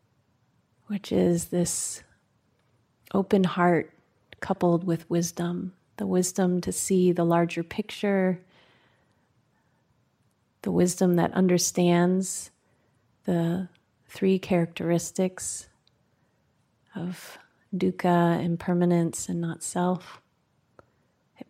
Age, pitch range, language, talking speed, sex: 30-49, 170-185 Hz, English, 80 wpm, female